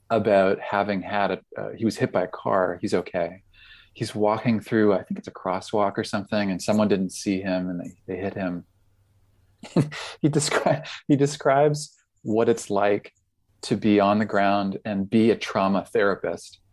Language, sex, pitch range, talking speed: English, male, 95-115 Hz, 175 wpm